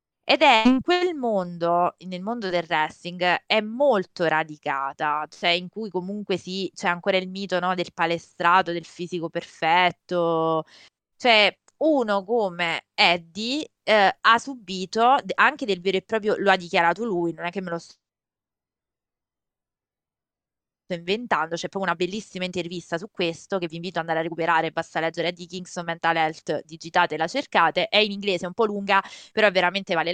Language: Italian